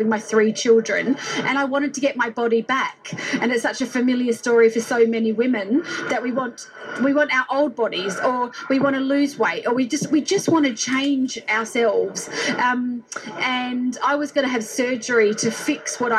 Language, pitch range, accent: English, 230-280 Hz, Australian